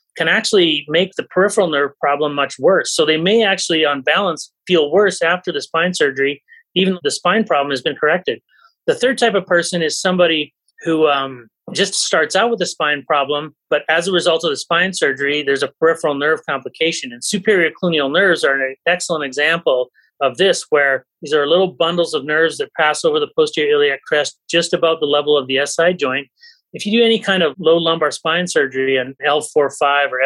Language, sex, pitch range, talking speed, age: English, male, 145-195 Hz, 205 wpm, 30-49